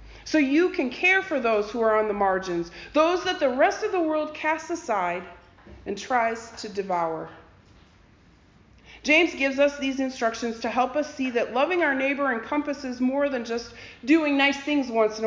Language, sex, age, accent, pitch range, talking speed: English, female, 40-59, American, 215-305 Hz, 180 wpm